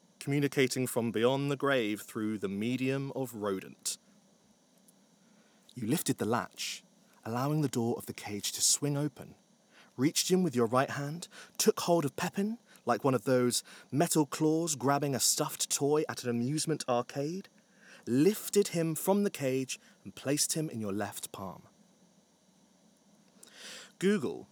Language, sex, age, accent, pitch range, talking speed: English, male, 30-49, British, 120-195 Hz, 145 wpm